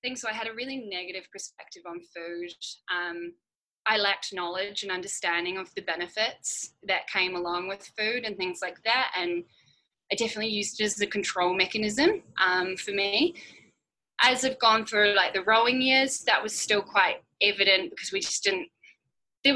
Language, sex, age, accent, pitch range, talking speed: English, female, 10-29, Australian, 180-225 Hz, 175 wpm